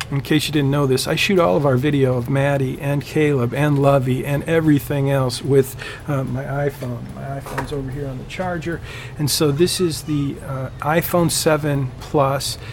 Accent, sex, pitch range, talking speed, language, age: American, male, 130-155 Hz, 195 wpm, English, 40-59